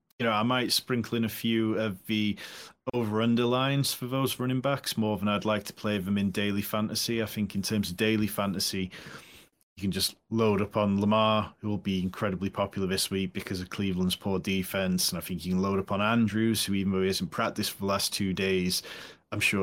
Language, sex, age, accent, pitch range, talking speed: English, male, 30-49, British, 100-115 Hz, 230 wpm